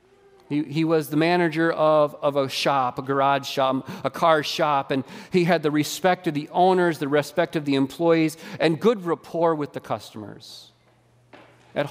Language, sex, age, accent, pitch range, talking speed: English, male, 40-59, American, 150-195 Hz, 170 wpm